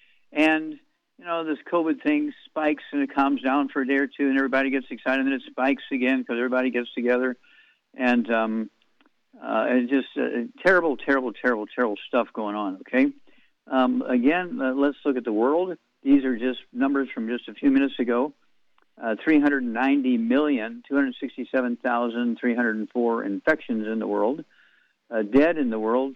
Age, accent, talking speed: 50-69, American, 165 wpm